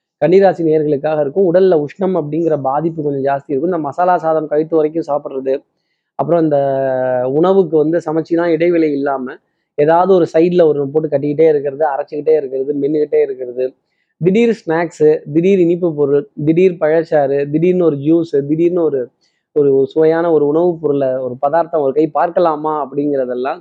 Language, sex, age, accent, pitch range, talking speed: Tamil, male, 20-39, native, 145-170 Hz, 145 wpm